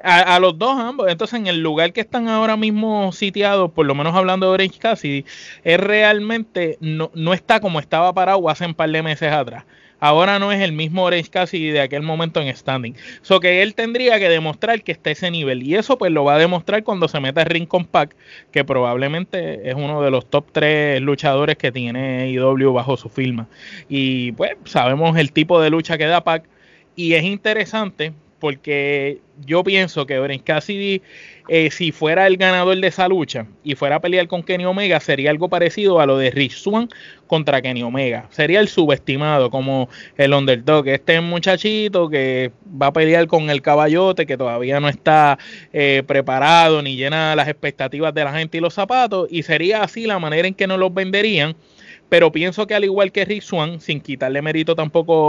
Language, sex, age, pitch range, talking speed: Spanish, male, 20-39, 140-185 Hz, 200 wpm